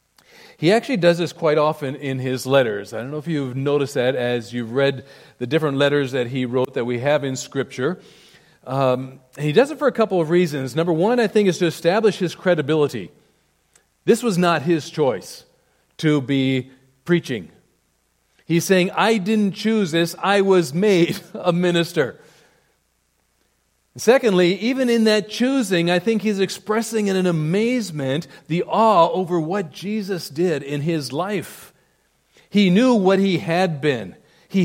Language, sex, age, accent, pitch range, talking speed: English, male, 40-59, American, 140-190 Hz, 165 wpm